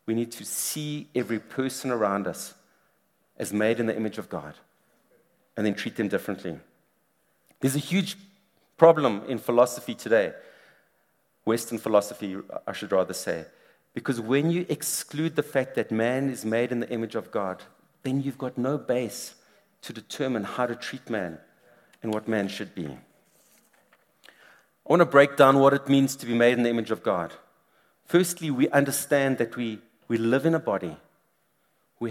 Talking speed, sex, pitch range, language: 170 wpm, male, 115-150 Hz, English